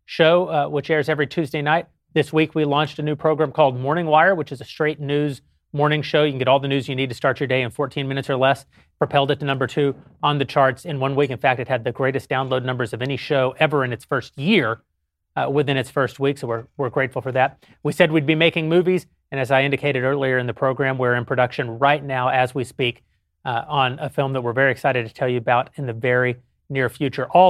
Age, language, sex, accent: 30-49, English, male, American